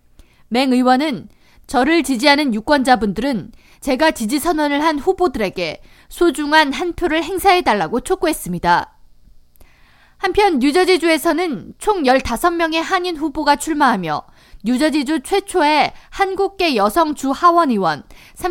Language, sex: Korean, female